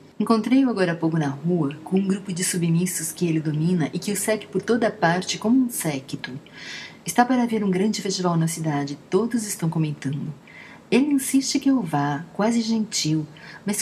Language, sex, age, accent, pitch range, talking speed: Portuguese, female, 40-59, Brazilian, 165-210 Hz, 185 wpm